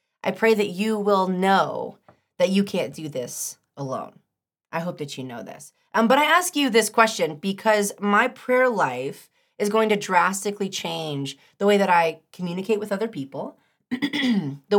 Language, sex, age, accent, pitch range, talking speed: English, female, 30-49, American, 180-245 Hz, 175 wpm